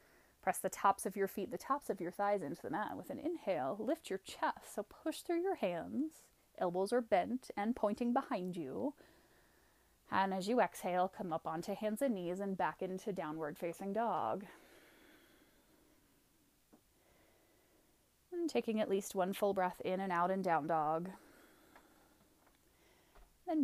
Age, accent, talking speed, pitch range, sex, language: 30-49, American, 155 wpm, 185-260 Hz, female, English